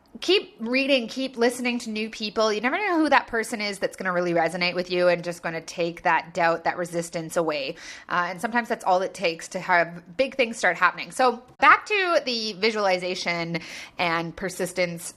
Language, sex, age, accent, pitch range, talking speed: English, female, 20-39, American, 190-265 Hz, 200 wpm